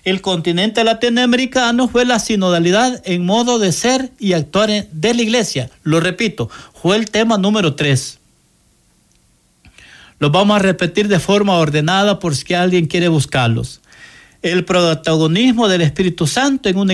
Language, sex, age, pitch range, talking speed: Spanish, male, 60-79, 165-235 Hz, 145 wpm